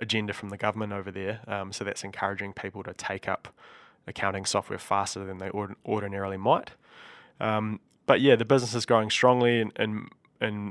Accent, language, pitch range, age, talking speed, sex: Australian, English, 100-110 Hz, 20-39, 180 wpm, male